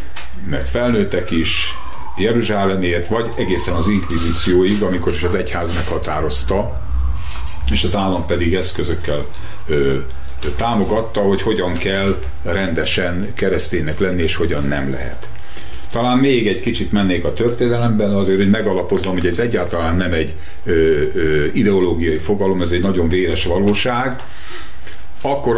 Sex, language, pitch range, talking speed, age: male, English, 75-105 Hz, 120 wpm, 50-69